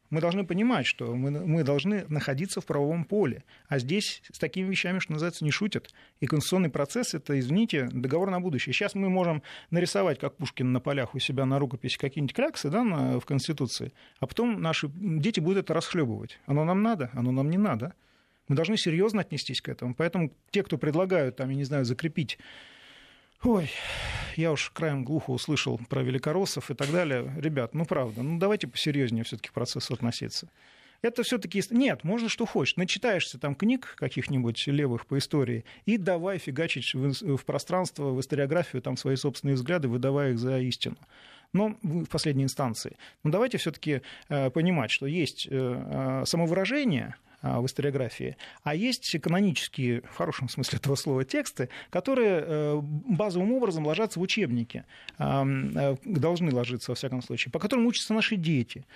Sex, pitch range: male, 135-185 Hz